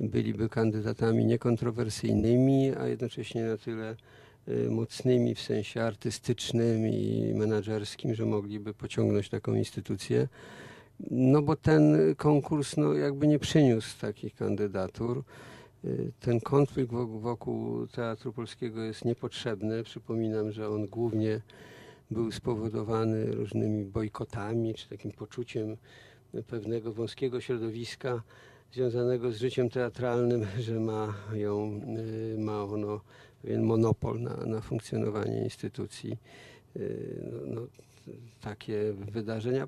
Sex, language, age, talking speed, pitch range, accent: male, Polish, 50-69, 100 wpm, 110-125 Hz, native